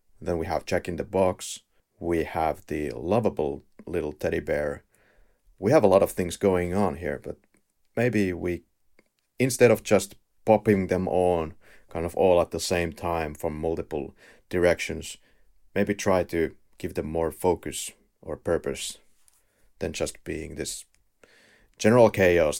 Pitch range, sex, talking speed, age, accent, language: 85-105 Hz, male, 150 wpm, 30-49, Finnish, English